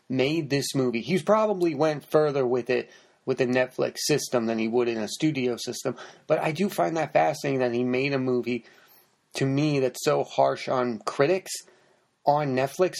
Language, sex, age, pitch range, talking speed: English, male, 30-49, 120-155 Hz, 185 wpm